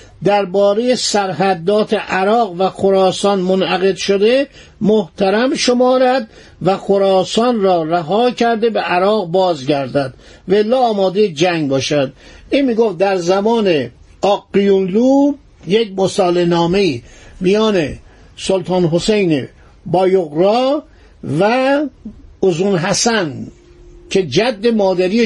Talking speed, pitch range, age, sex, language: 95 wpm, 180-230 Hz, 50-69, male, Persian